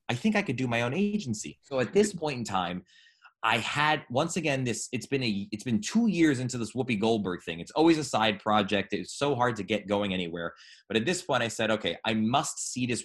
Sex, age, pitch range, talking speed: male, 20-39, 100-125 Hz, 250 wpm